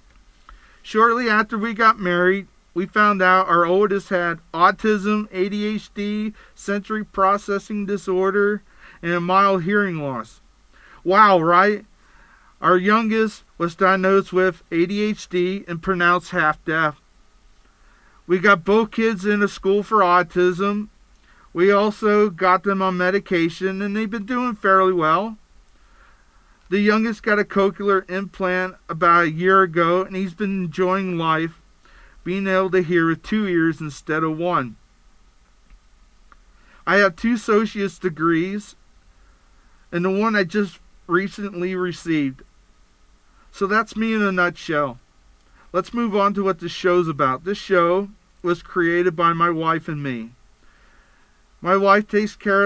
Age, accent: 40-59, American